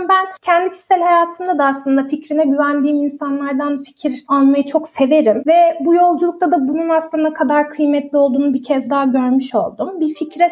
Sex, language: female, Turkish